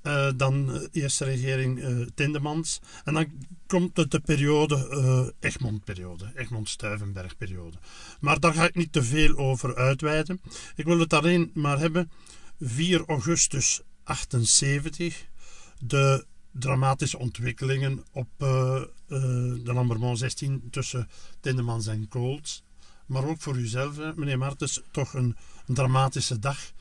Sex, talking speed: male, 135 wpm